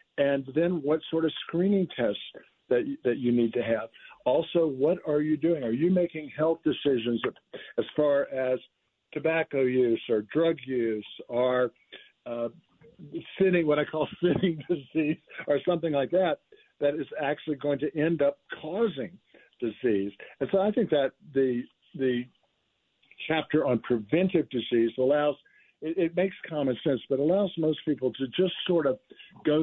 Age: 60-79